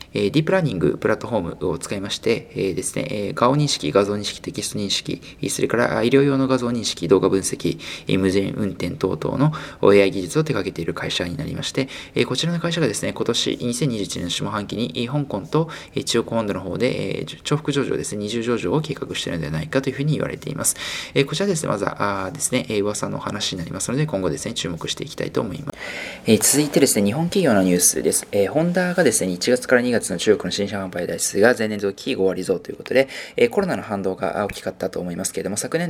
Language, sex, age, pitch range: Japanese, male, 20-39, 100-140 Hz